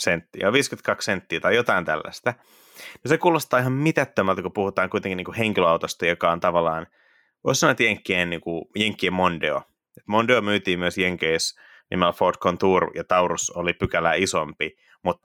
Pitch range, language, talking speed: 85-100 Hz, Finnish, 160 wpm